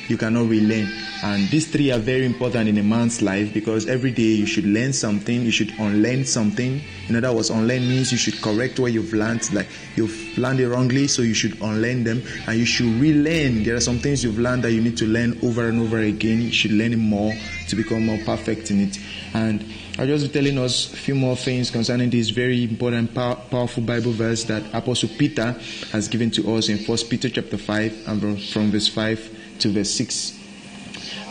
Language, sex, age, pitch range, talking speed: English, male, 30-49, 110-125 Hz, 215 wpm